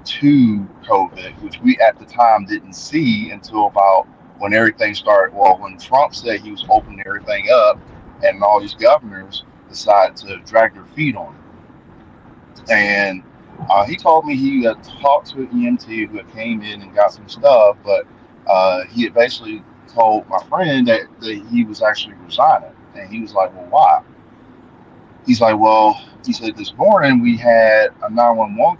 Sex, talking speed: male, 175 wpm